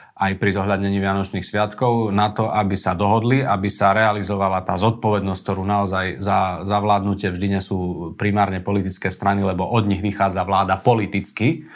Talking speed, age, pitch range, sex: 165 wpm, 40-59, 95-105 Hz, male